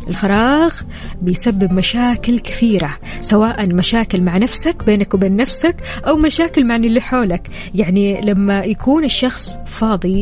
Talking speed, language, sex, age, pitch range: 125 wpm, English, female, 20-39, 190-230 Hz